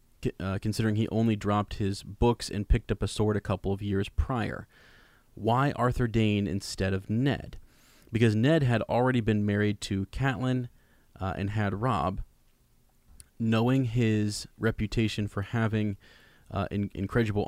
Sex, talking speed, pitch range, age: male, 150 wpm, 100-120 Hz, 30-49